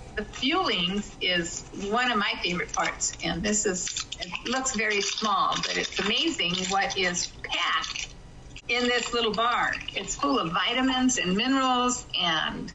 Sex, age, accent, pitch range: female, 50-69, American, 200-245 Hz